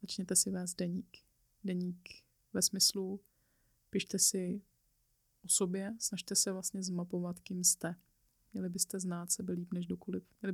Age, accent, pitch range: 20-39, native, 175-195 Hz